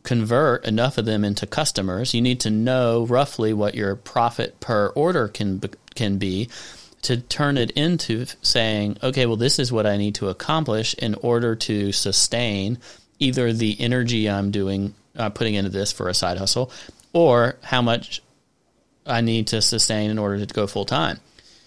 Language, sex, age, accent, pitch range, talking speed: English, male, 30-49, American, 100-120 Hz, 170 wpm